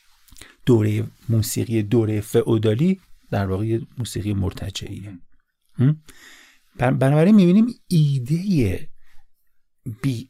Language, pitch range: Persian, 105-140 Hz